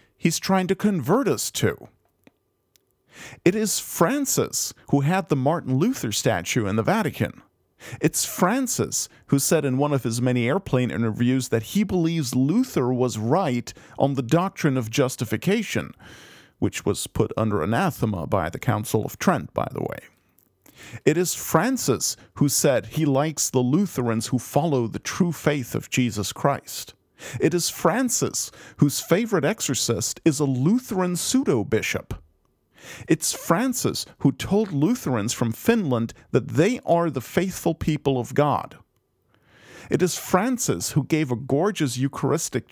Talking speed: 145 wpm